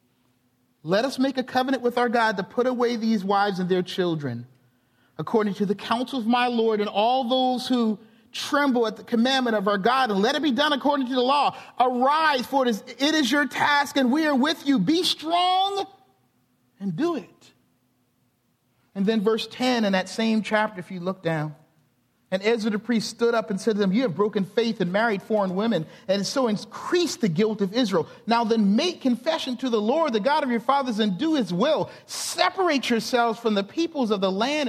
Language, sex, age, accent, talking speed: English, male, 40-59, American, 210 wpm